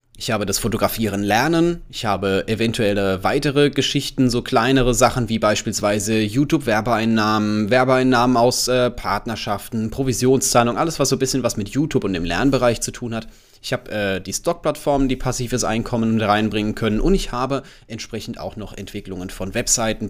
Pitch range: 110-135 Hz